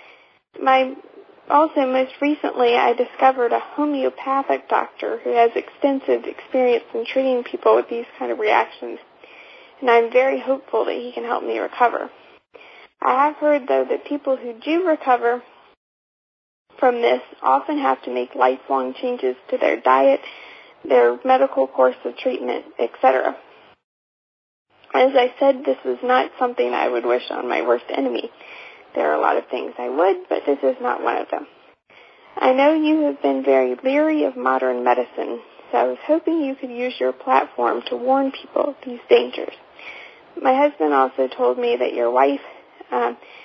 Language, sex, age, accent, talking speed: English, female, 40-59, American, 165 wpm